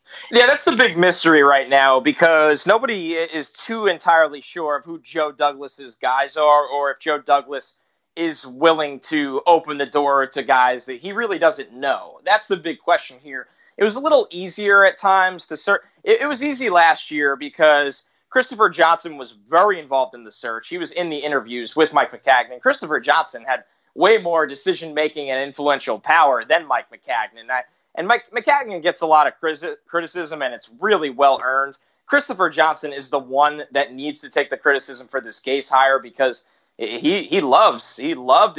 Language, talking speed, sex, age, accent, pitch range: English, 185 wpm, male, 20-39, American, 145-190 Hz